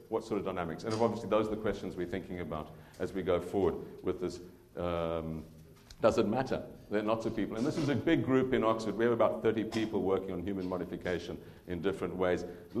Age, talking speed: 50-69, 230 wpm